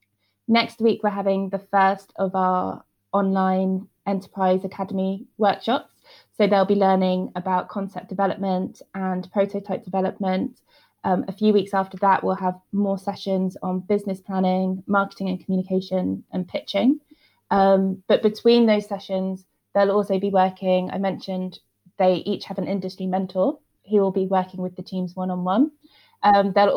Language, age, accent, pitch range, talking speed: English, 20-39, British, 185-200 Hz, 150 wpm